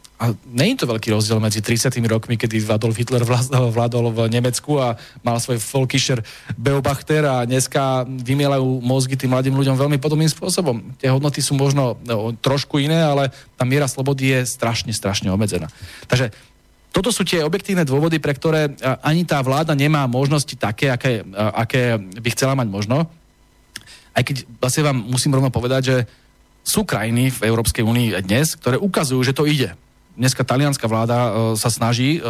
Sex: male